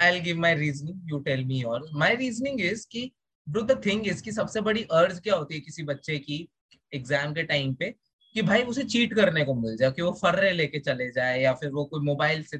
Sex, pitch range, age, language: male, 150-220 Hz, 20-39, Hindi